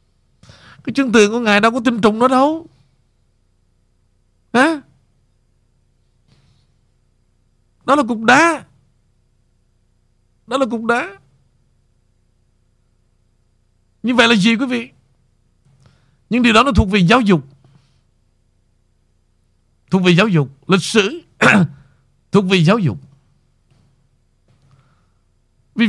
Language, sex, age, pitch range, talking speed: Vietnamese, male, 50-69, 115-190 Hz, 105 wpm